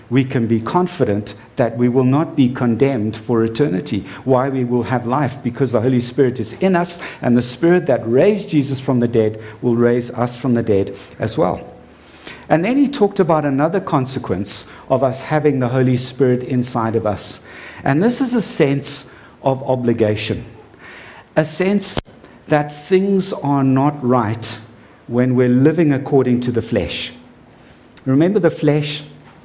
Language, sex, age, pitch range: English, male, 60-79, 120-160 Hz